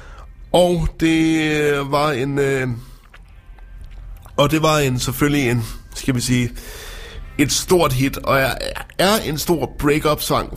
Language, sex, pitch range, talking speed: Danish, male, 120-145 Hz, 130 wpm